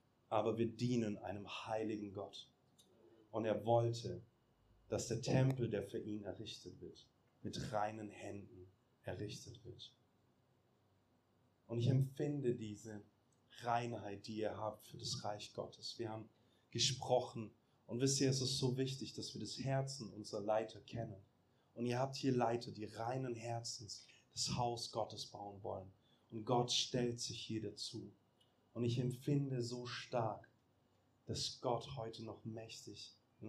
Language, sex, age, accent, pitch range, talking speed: German, male, 30-49, German, 110-125 Hz, 145 wpm